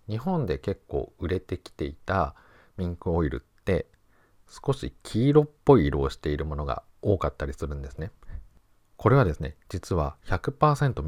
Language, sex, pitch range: Japanese, male, 80-130 Hz